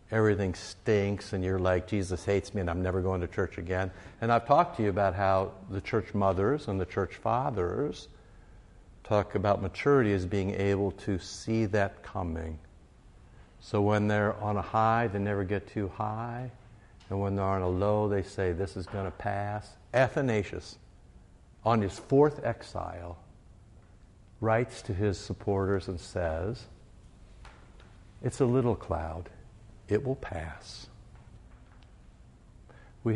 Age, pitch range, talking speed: 60-79, 90-110 Hz, 150 wpm